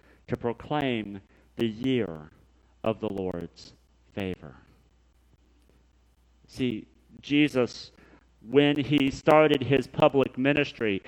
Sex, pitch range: male, 110-150 Hz